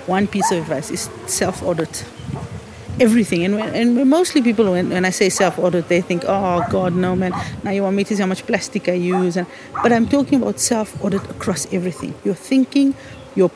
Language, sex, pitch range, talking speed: English, female, 185-250 Hz, 200 wpm